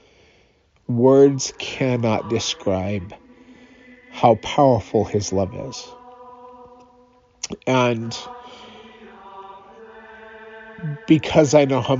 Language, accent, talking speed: English, American, 65 wpm